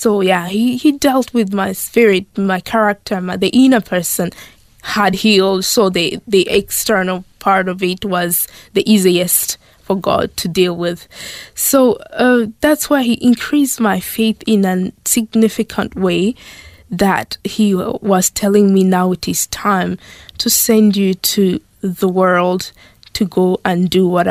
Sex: female